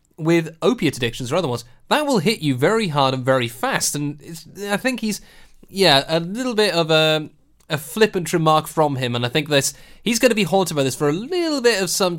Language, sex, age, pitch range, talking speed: English, male, 20-39, 130-185 Hz, 230 wpm